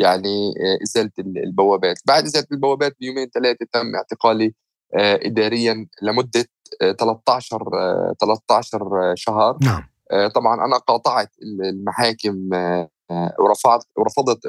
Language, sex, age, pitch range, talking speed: Arabic, male, 20-39, 105-130 Hz, 85 wpm